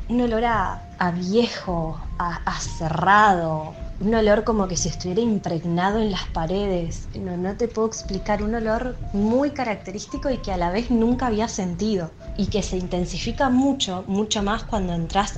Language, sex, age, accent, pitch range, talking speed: Spanish, female, 20-39, Argentinian, 170-205 Hz, 170 wpm